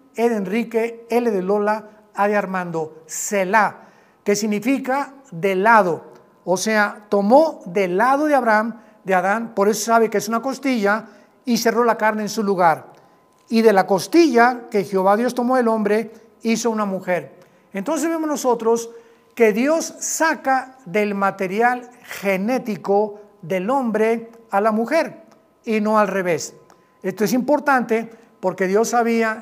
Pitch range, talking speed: 195-240 Hz, 150 wpm